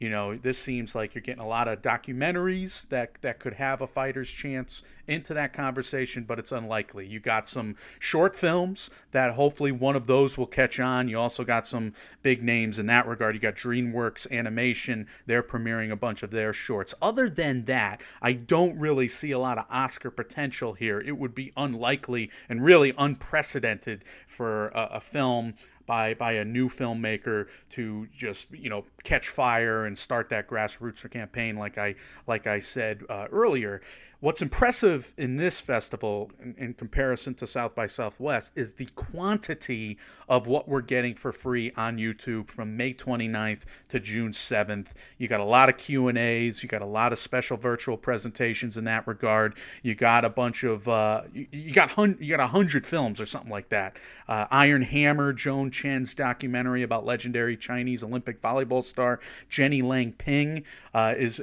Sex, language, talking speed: male, English, 180 wpm